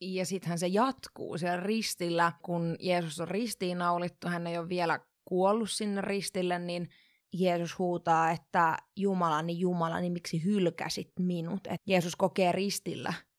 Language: Finnish